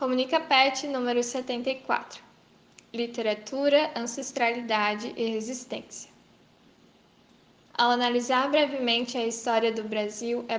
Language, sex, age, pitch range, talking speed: Portuguese, female, 10-29, 225-255 Hz, 90 wpm